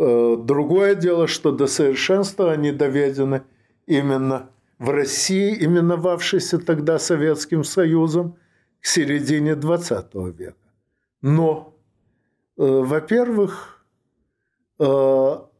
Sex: male